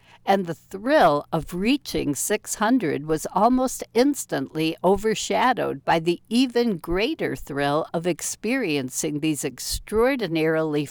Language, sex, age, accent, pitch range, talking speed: English, female, 60-79, American, 155-215 Hz, 110 wpm